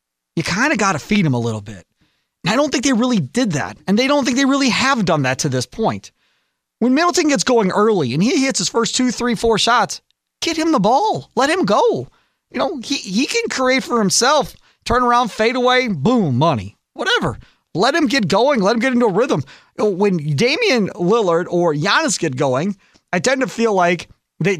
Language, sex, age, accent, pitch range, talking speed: English, male, 30-49, American, 160-235 Hz, 215 wpm